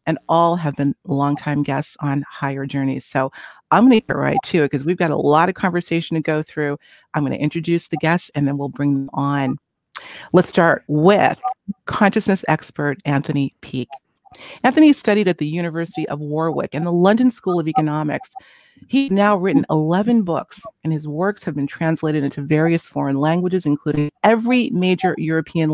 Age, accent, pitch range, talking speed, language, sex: 40-59, American, 145-195 Hz, 175 wpm, English, female